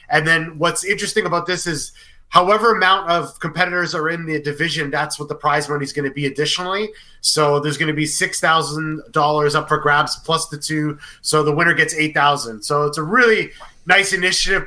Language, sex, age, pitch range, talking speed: English, male, 30-49, 150-175 Hz, 195 wpm